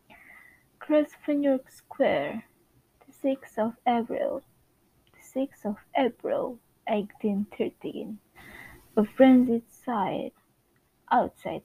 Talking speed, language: 90 wpm, English